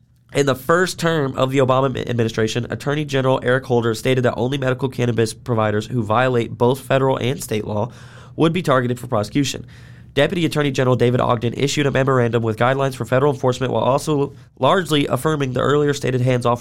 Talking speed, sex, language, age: 185 wpm, male, English, 20-39